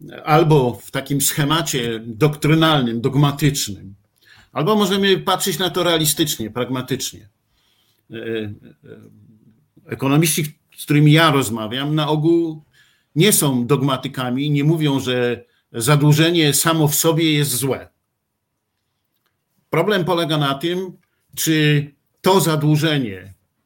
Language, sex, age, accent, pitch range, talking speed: Polish, male, 50-69, native, 120-170 Hz, 100 wpm